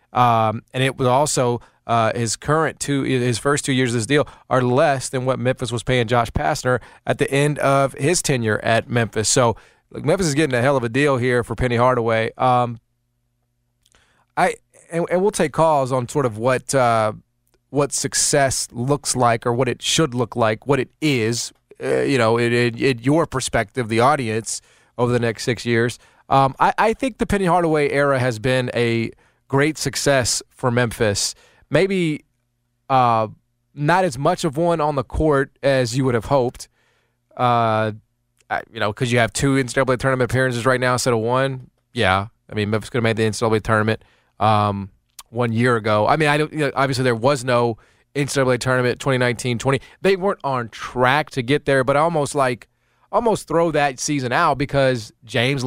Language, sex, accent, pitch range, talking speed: English, male, American, 120-140 Hz, 190 wpm